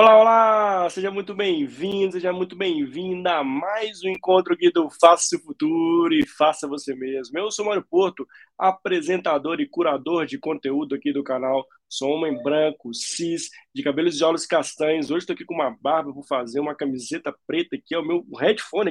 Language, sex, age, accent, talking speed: Portuguese, male, 20-39, Brazilian, 185 wpm